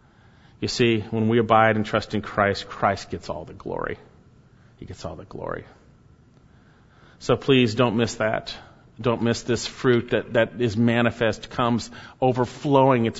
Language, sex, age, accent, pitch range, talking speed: English, male, 40-59, American, 105-130 Hz, 160 wpm